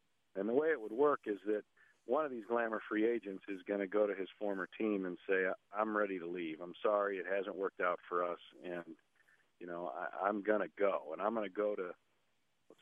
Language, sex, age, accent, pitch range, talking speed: English, male, 40-59, American, 95-110 Hz, 230 wpm